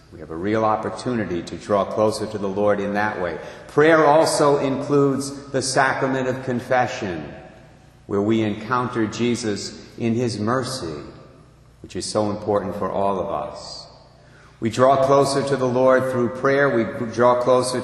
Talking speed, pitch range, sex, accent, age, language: 160 wpm, 105-140 Hz, male, American, 50-69, English